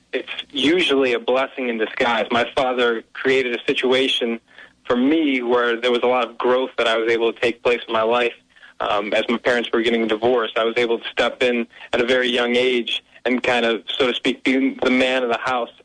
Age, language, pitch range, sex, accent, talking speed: 30-49, English, 115-130 Hz, male, American, 225 wpm